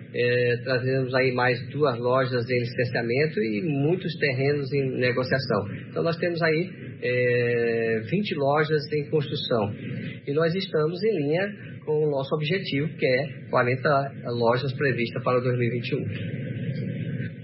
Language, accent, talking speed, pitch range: Portuguese, Brazilian, 125 wpm, 125-155 Hz